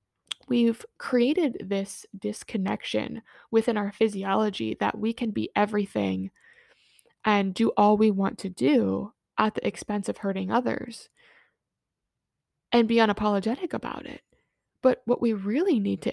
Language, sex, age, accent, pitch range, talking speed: English, female, 20-39, American, 195-235 Hz, 135 wpm